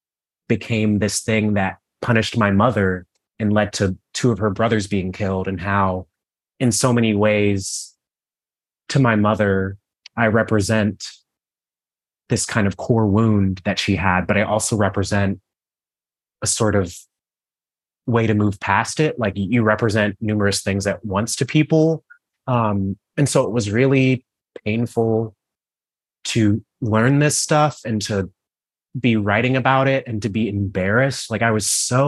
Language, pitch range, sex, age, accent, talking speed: English, 95-115 Hz, male, 30-49, American, 150 wpm